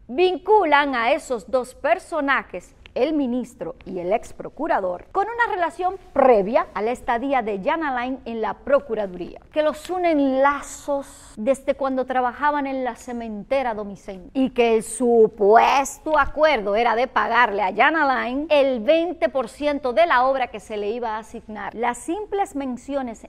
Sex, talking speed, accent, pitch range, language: female, 155 wpm, American, 225-300 Hz, Spanish